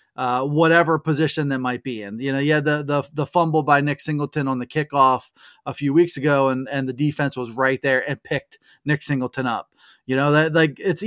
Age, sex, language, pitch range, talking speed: 20-39, male, English, 135-185 Hz, 220 wpm